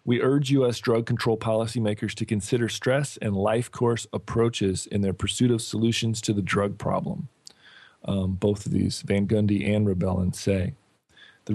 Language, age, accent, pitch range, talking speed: English, 40-59, American, 100-120 Hz, 165 wpm